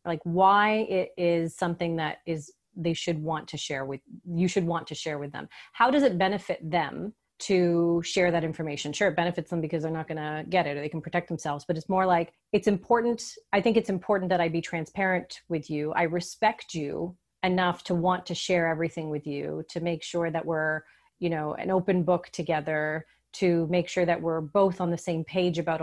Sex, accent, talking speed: female, American, 220 wpm